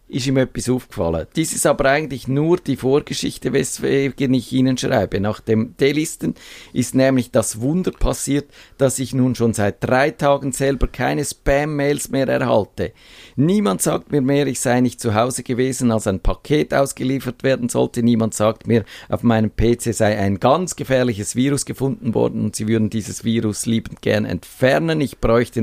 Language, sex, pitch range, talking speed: German, male, 115-140 Hz, 175 wpm